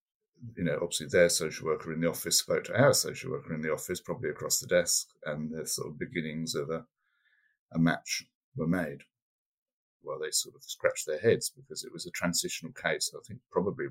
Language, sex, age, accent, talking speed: English, male, 50-69, British, 205 wpm